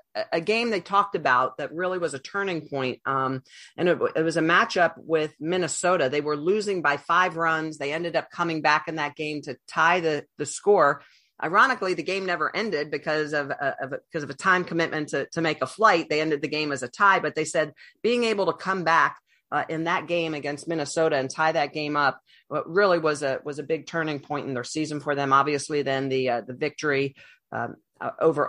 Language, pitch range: English, 140-170 Hz